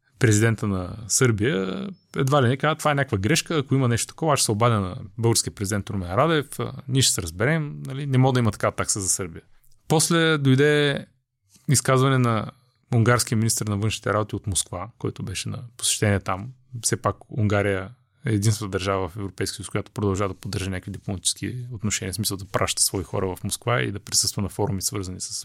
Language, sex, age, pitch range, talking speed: Bulgarian, male, 30-49, 100-130 Hz, 200 wpm